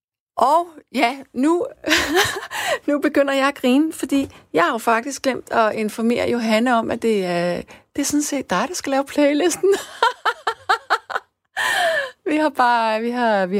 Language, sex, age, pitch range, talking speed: Danish, female, 30-49, 185-270 Hz, 160 wpm